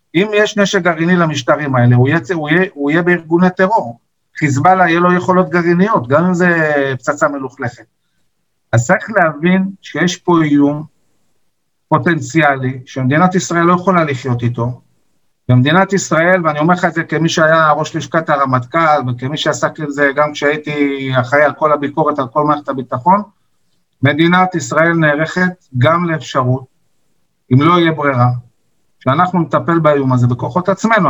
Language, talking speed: Hebrew, 150 wpm